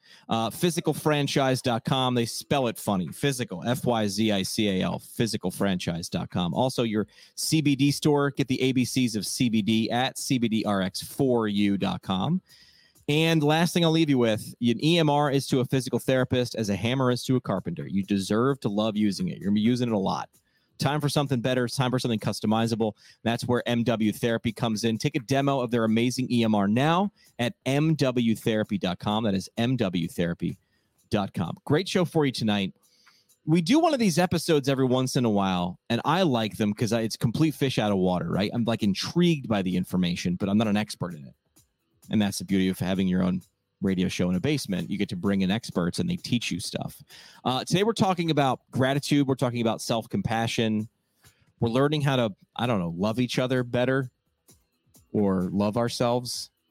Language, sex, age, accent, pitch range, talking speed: English, male, 30-49, American, 105-140 Hz, 185 wpm